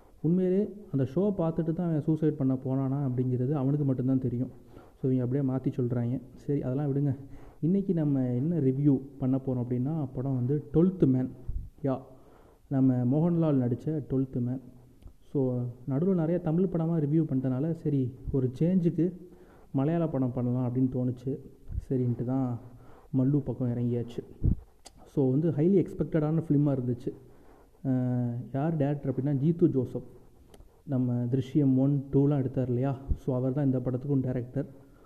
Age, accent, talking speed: 30-49, native, 135 wpm